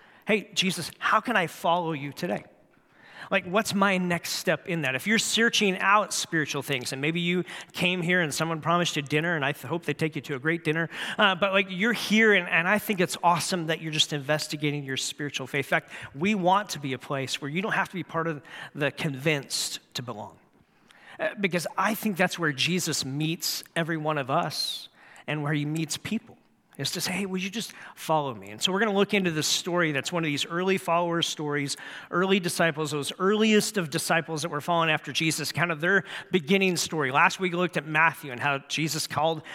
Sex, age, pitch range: male, 40-59, 150-185 Hz